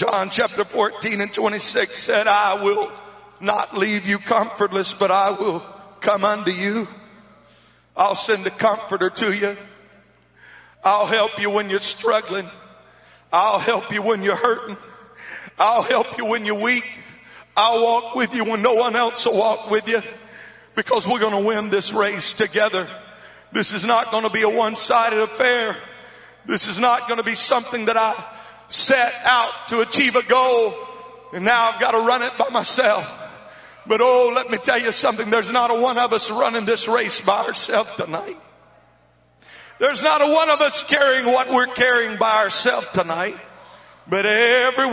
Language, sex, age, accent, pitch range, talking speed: English, male, 50-69, American, 210-250 Hz, 175 wpm